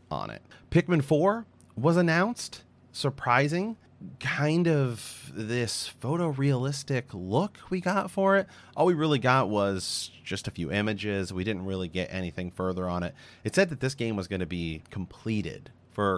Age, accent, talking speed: 30-49, American, 165 wpm